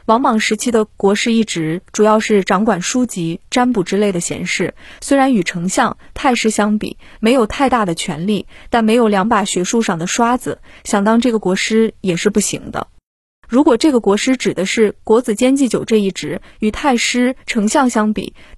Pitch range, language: 205-255 Hz, Chinese